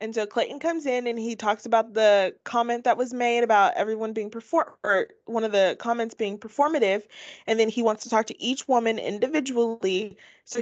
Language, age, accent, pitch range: English, 20-39, American, 205-255 Hz